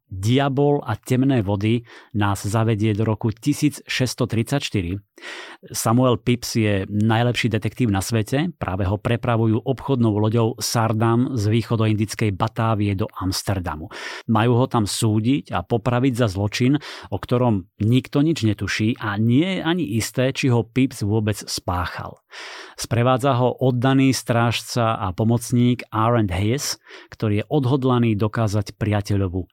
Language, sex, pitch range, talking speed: Slovak, male, 105-125 Hz, 130 wpm